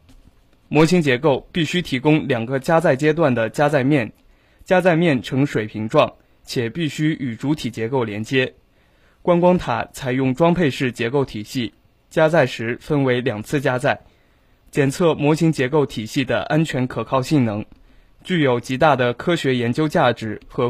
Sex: male